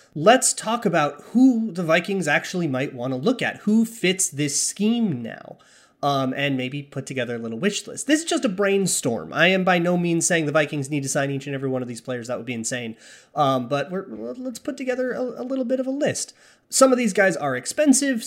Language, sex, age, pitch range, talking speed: English, male, 30-49, 135-195 Hz, 235 wpm